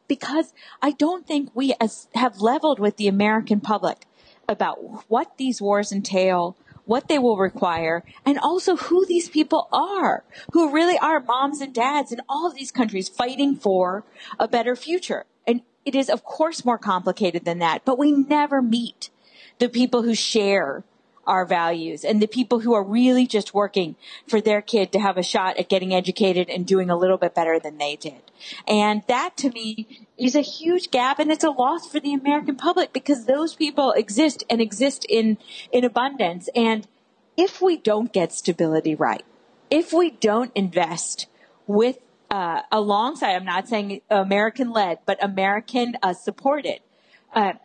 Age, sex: 40-59, female